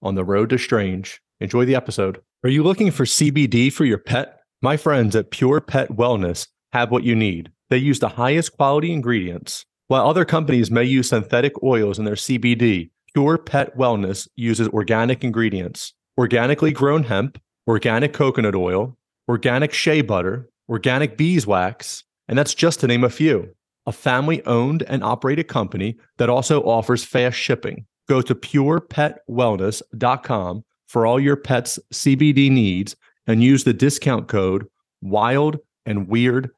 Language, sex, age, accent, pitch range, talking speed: English, male, 30-49, American, 110-140 Hz, 155 wpm